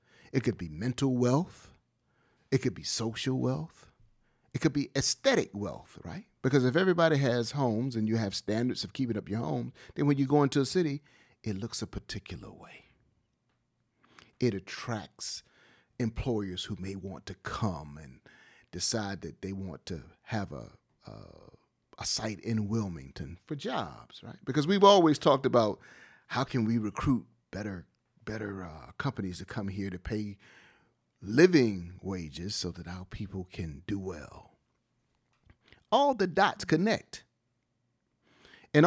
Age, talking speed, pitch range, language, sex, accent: 40-59, 150 wpm, 100-140 Hz, English, male, American